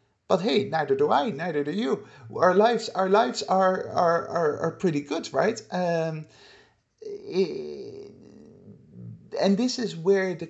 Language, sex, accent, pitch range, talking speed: English, male, Dutch, 130-195 Hz, 145 wpm